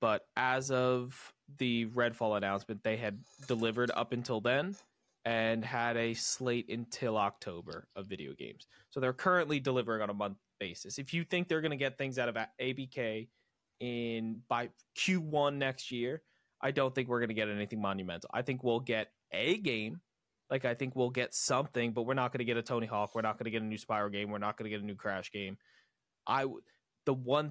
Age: 20-39